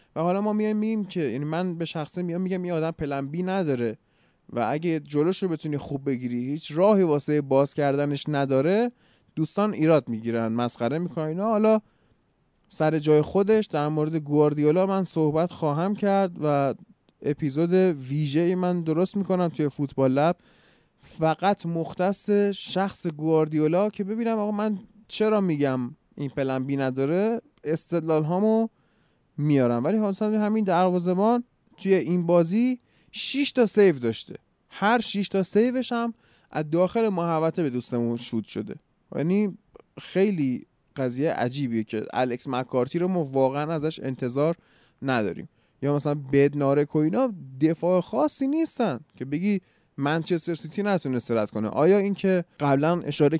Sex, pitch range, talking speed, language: male, 140-195 Hz, 140 wpm, Persian